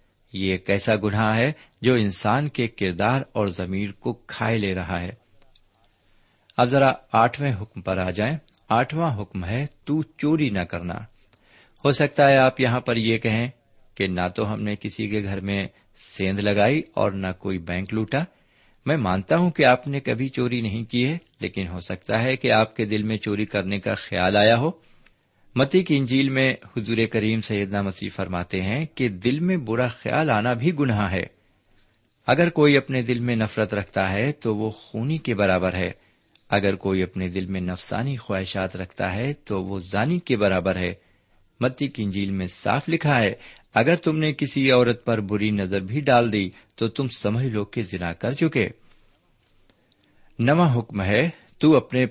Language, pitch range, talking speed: Urdu, 100-130 Hz, 180 wpm